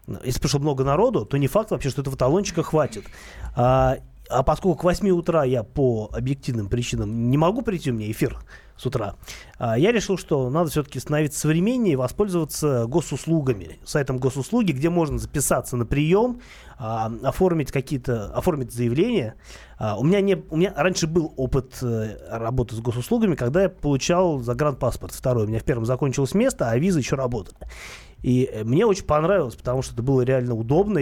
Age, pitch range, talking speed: 30-49, 115-165 Hz, 175 wpm